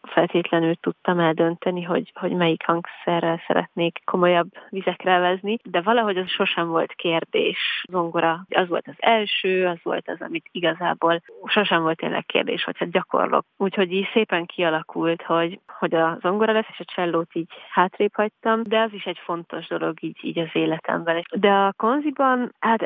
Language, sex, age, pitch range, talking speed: Hungarian, female, 20-39, 170-195 Hz, 165 wpm